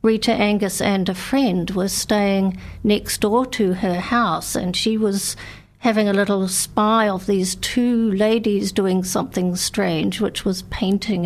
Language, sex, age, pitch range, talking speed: English, female, 50-69, 185-220 Hz, 155 wpm